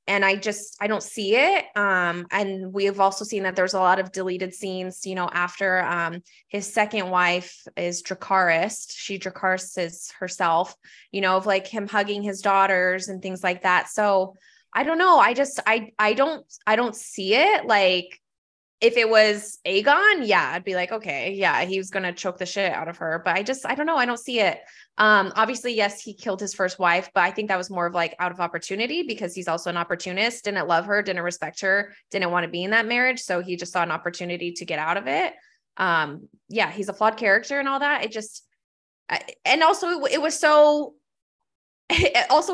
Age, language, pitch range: 20-39, English, 185-225 Hz